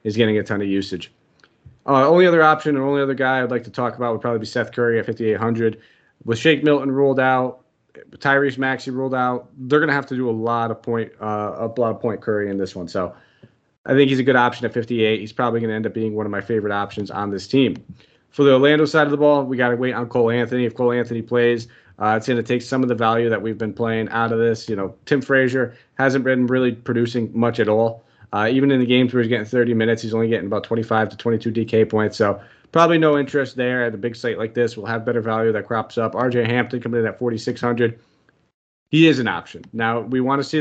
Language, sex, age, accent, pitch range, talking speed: English, male, 30-49, American, 110-130 Hz, 260 wpm